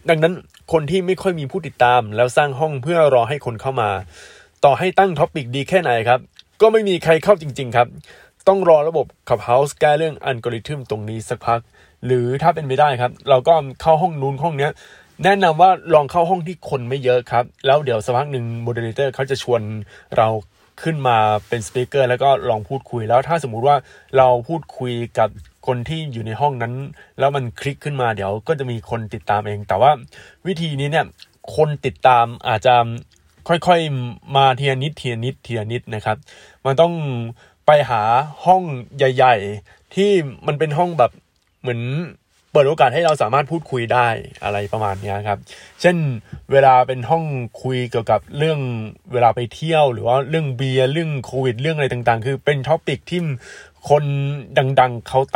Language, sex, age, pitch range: Thai, male, 20-39, 120-155 Hz